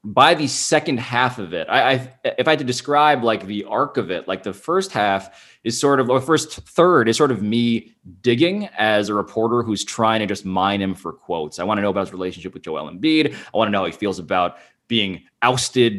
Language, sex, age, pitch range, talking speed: English, male, 20-39, 95-120 Hz, 240 wpm